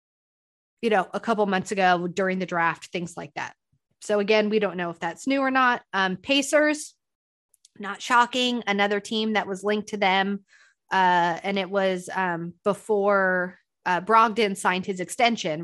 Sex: female